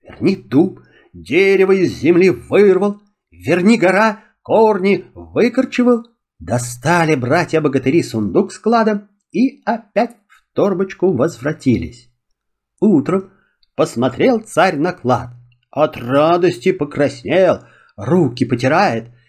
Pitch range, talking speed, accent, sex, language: 145-235 Hz, 90 wpm, native, male, Russian